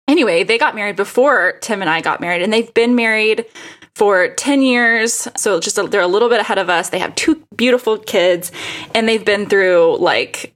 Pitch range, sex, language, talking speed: 200-255 Hz, female, English, 210 wpm